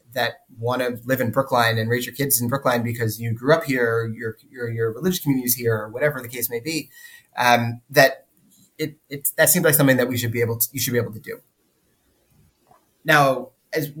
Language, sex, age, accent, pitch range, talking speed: English, male, 30-49, American, 120-140 Hz, 225 wpm